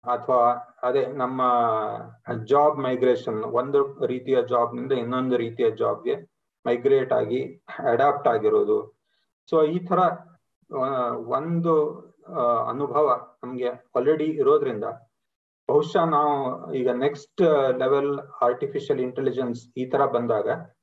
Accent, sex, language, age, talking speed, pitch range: native, male, Kannada, 30-49, 100 wpm, 130-180 Hz